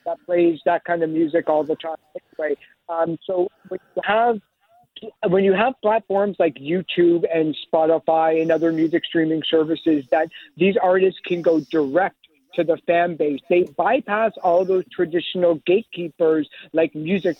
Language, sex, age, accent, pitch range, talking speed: English, male, 50-69, American, 165-195 Hz, 160 wpm